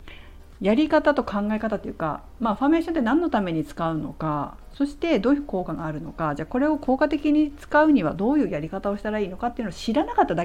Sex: female